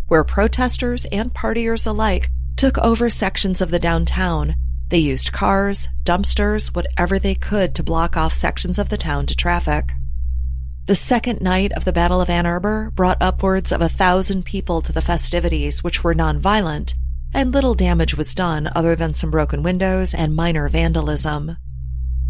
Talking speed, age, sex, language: 165 wpm, 30-49, female, English